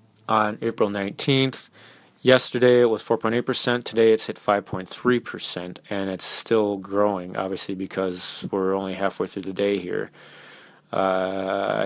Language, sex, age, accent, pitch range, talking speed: English, male, 30-49, American, 100-115 Hz, 155 wpm